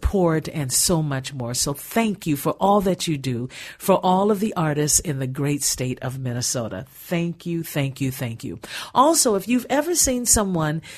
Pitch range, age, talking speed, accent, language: 130-170 Hz, 50-69, 190 wpm, American, English